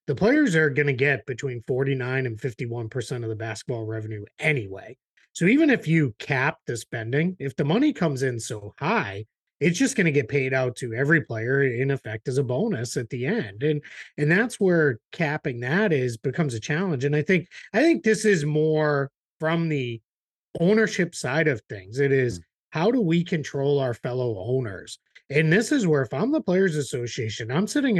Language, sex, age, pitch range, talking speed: English, male, 30-49, 130-195 Hz, 195 wpm